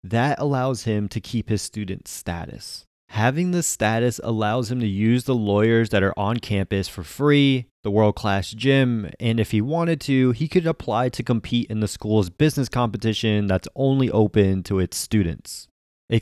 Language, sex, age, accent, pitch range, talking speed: English, male, 20-39, American, 105-130 Hz, 180 wpm